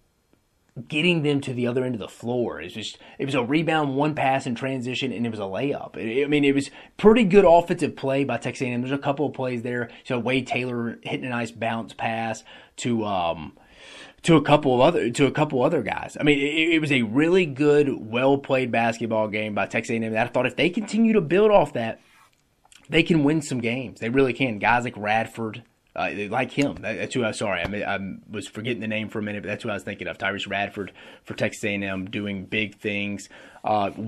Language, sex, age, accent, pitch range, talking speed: English, male, 30-49, American, 105-140 Hz, 225 wpm